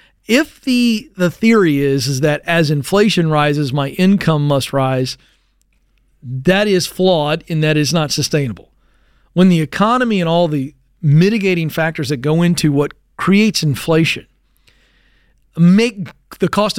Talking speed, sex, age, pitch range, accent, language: 140 wpm, male, 40-59, 155-195 Hz, American, English